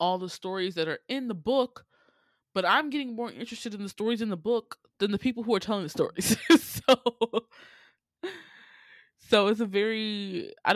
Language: English